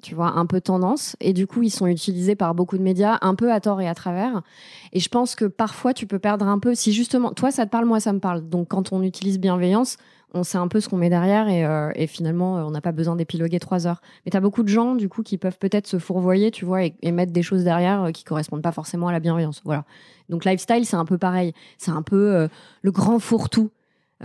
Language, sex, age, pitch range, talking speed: French, female, 20-39, 170-205 Hz, 270 wpm